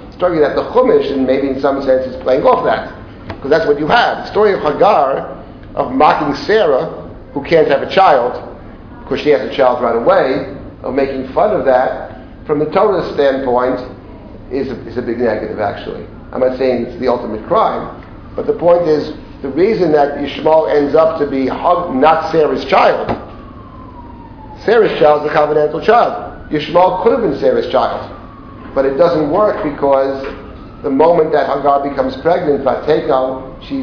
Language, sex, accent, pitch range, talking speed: English, male, American, 130-165 Hz, 180 wpm